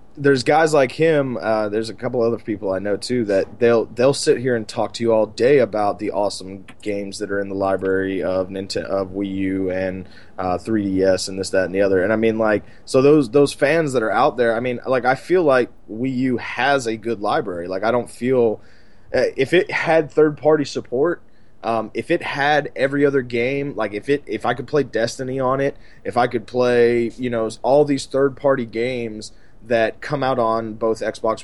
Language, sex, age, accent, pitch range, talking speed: English, male, 20-39, American, 105-130 Hz, 220 wpm